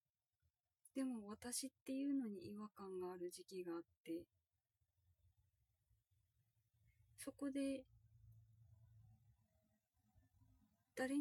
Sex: female